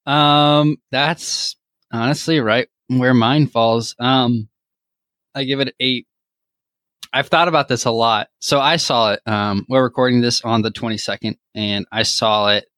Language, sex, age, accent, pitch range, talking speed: English, male, 20-39, American, 110-135 Hz, 155 wpm